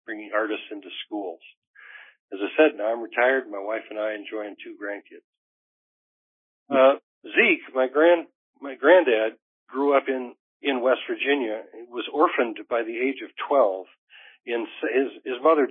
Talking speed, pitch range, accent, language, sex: 160 wpm, 110-160 Hz, American, English, male